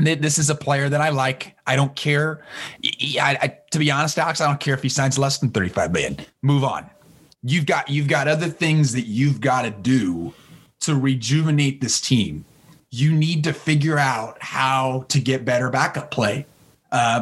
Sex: male